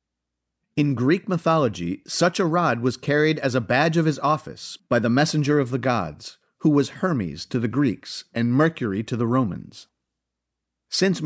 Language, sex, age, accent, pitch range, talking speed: English, male, 50-69, American, 115-165 Hz, 170 wpm